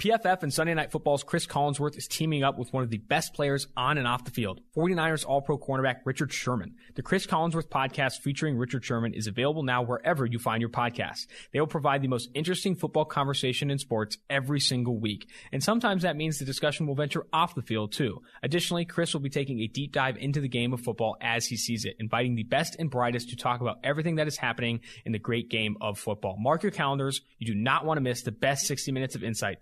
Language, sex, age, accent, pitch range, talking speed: English, male, 20-39, American, 115-150 Hz, 235 wpm